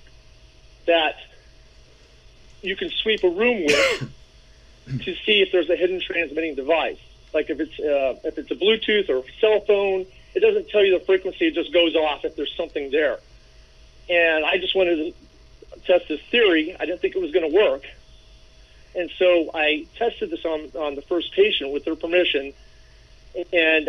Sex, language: male, English